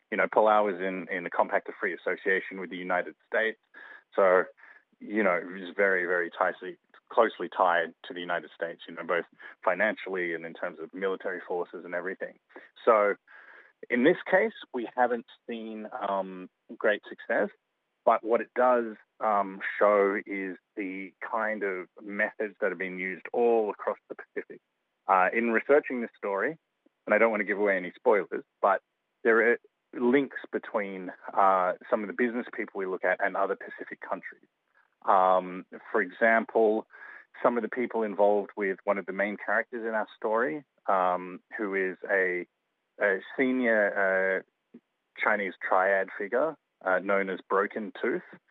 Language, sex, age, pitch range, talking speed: English, male, 30-49, 95-115 Hz, 165 wpm